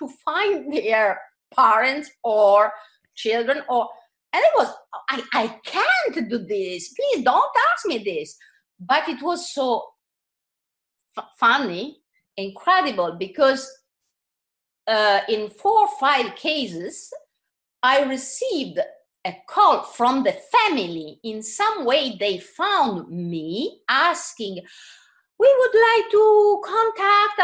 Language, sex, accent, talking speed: English, female, Italian, 115 wpm